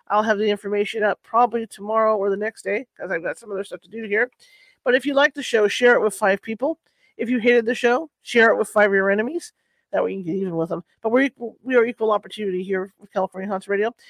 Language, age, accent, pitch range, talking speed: English, 40-59, American, 205-245 Hz, 270 wpm